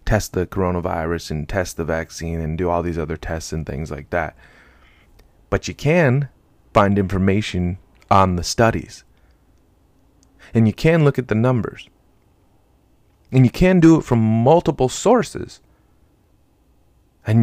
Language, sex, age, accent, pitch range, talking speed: English, male, 30-49, American, 85-115 Hz, 140 wpm